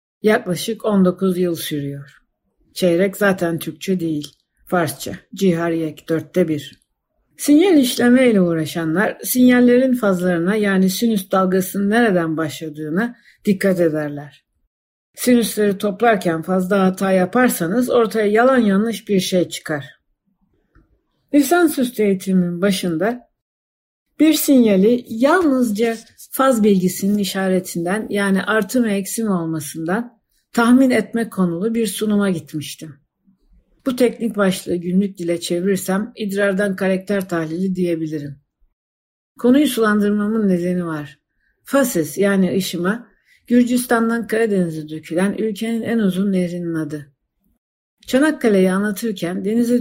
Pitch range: 170-225 Hz